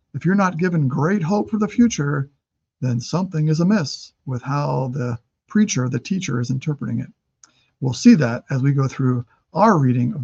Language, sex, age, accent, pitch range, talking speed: English, male, 50-69, American, 135-195 Hz, 190 wpm